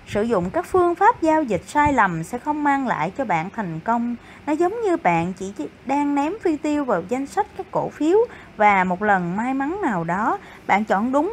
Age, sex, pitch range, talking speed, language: 20-39, female, 200-330 Hz, 225 wpm, Vietnamese